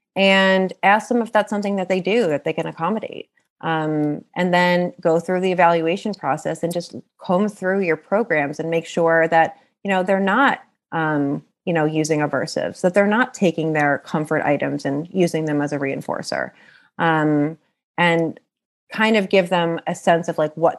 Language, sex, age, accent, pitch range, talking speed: English, female, 30-49, American, 155-190 Hz, 185 wpm